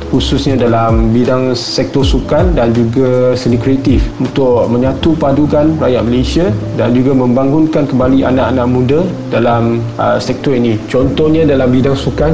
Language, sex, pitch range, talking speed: Malay, male, 125-140 Hz, 135 wpm